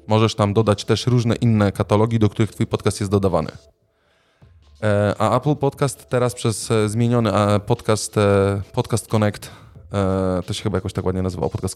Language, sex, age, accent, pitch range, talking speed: Polish, male, 20-39, native, 105-130 Hz, 180 wpm